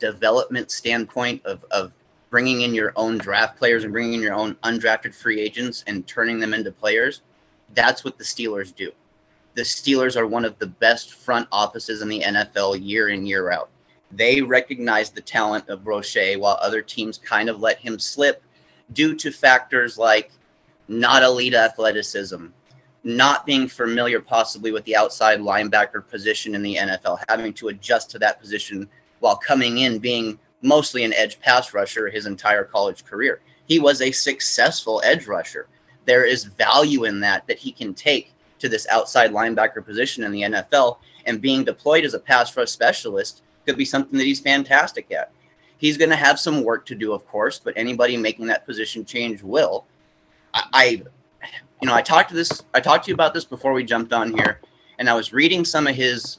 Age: 30-49